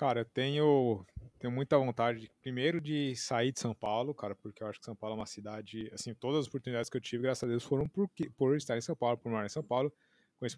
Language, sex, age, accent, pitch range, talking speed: Portuguese, male, 20-39, Brazilian, 115-140 Hz, 260 wpm